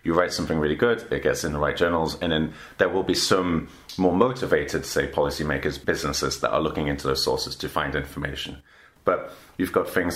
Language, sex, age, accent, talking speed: English, male, 30-49, British, 205 wpm